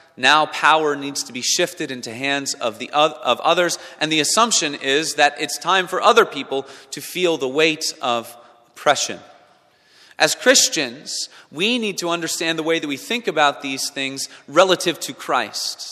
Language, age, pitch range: English, 30-49, 130-175 Hz